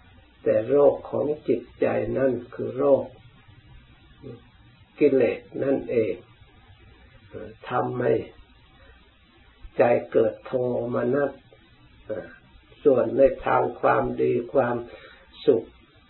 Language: Thai